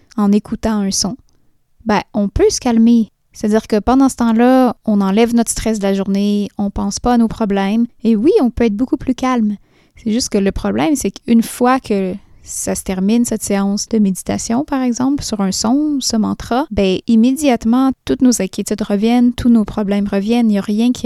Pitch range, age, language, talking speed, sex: 195-230 Hz, 20-39, French, 210 wpm, female